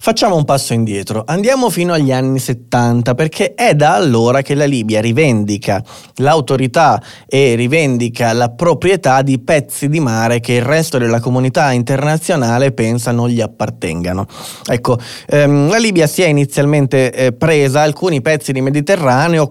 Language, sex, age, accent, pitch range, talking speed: Italian, male, 20-39, native, 120-155 Hz, 150 wpm